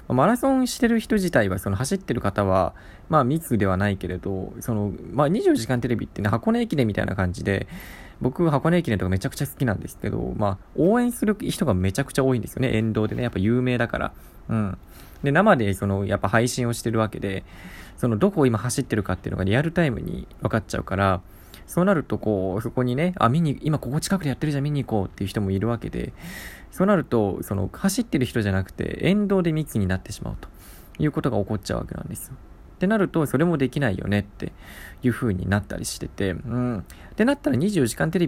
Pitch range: 100-155 Hz